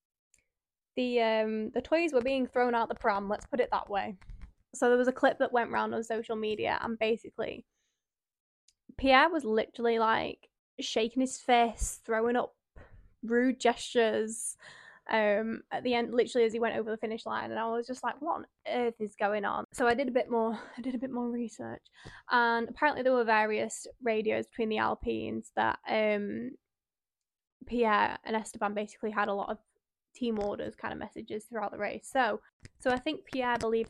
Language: English